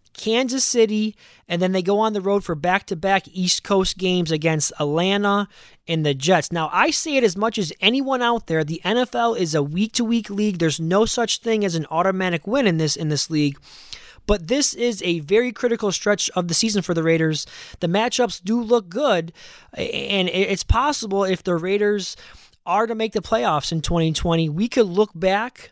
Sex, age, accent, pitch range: male, 20-39, American, 165-210 Hz